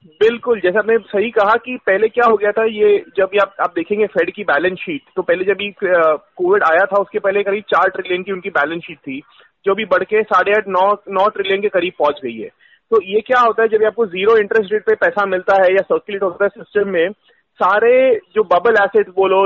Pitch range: 195-245 Hz